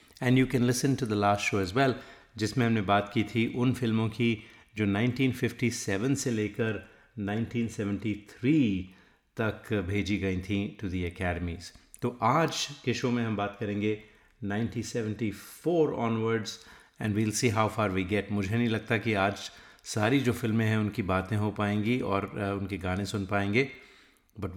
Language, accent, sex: Hindi, native, male